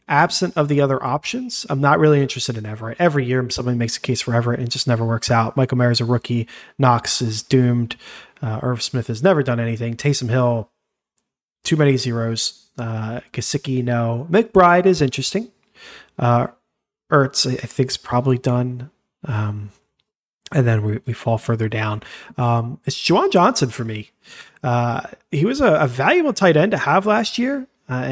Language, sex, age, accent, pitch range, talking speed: English, male, 30-49, American, 125-180 Hz, 175 wpm